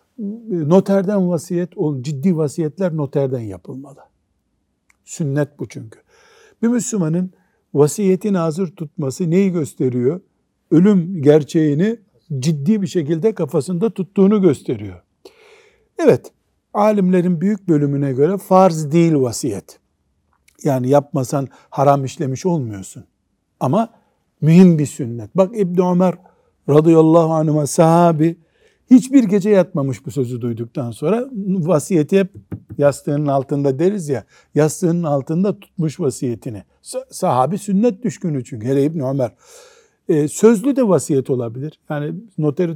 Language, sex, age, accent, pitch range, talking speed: Turkish, male, 60-79, native, 145-195 Hz, 110 wpm